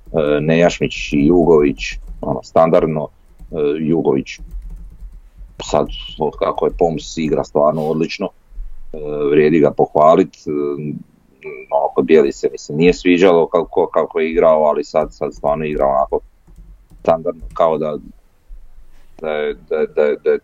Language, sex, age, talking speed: Croatian, male, 40-59, 140 wpm